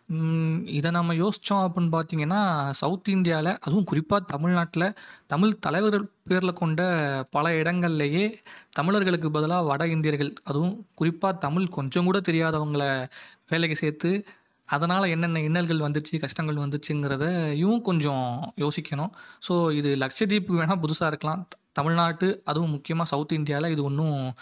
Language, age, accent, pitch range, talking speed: Tamil, 20-39, native, 150-185 Hz, 120 wpm